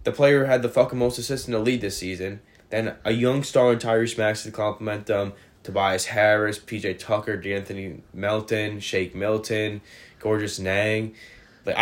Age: 10-29